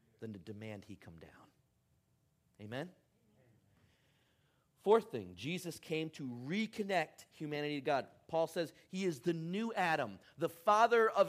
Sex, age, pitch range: male, 40-59, 120-185 Hz